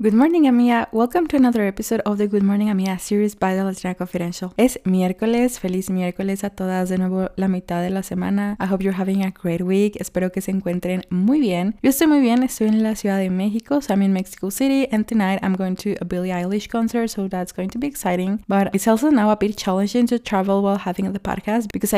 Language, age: English, 20-39